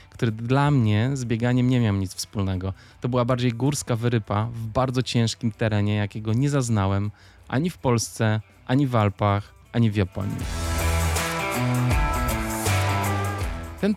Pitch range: 100-130 Hz